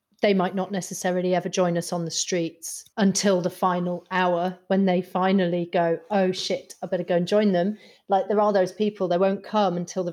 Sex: female